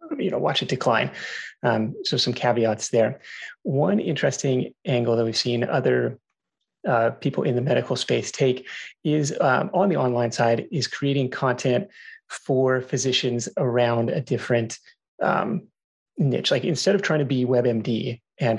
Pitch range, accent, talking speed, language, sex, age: 120-145 Hz, American, 155 wpm, English, male, 30-49